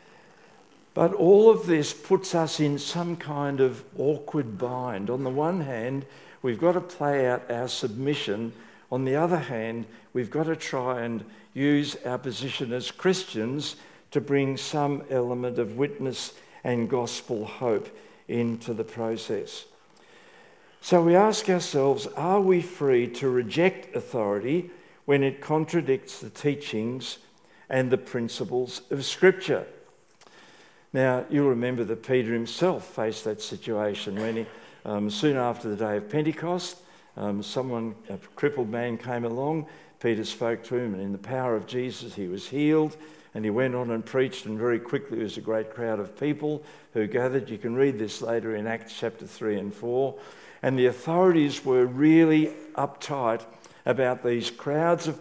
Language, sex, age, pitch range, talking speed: English, male, 60-79, 115-155 Hz, 155 wpm